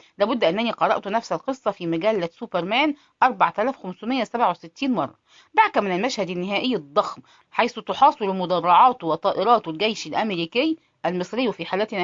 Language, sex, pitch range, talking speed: English, female, 180-245 Hz, 120 wpm